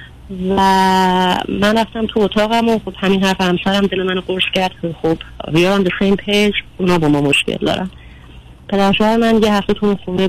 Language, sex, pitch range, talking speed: Persian, female, 160-195 Hz, 175 wpm